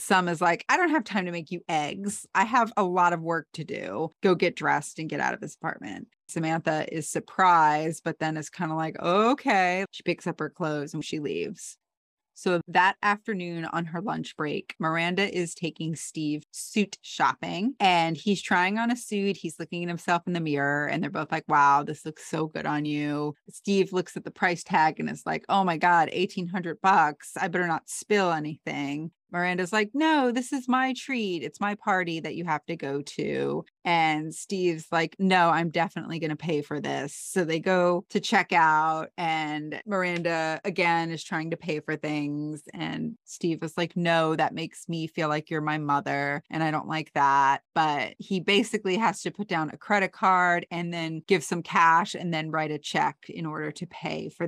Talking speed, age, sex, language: 205 wpm, 30-49, female, English